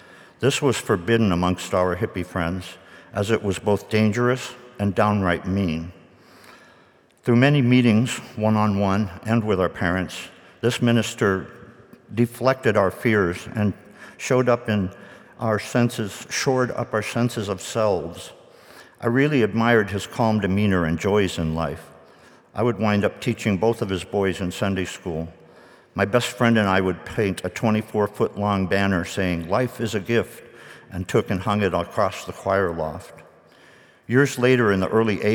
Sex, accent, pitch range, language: male, American, 90-115 Hz, English